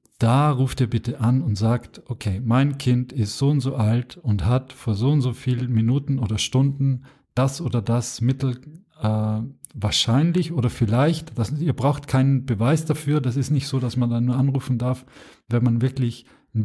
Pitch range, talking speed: 115-140 Hz, 190 wpm